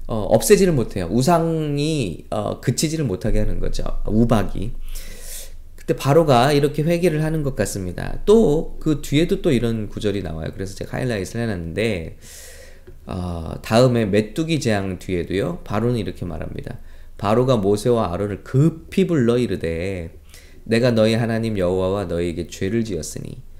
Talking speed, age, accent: 120 wpm, 20-39, Korean